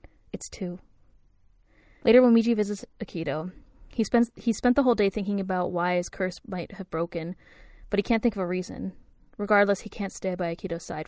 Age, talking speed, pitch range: 20-39, 195 wpm, 175-220 Hz